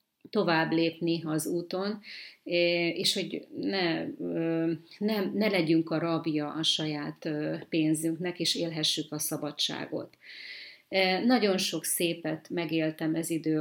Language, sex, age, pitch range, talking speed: Hungarian, female, 30-49, 160-180 Hz, 110 wpm